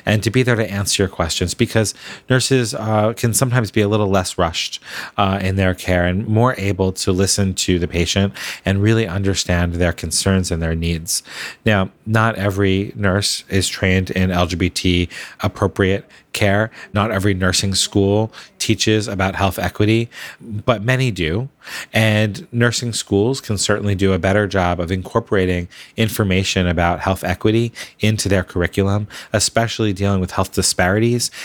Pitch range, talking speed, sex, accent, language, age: 95-115 Hz, 155 wpm, male, American, English, 30-49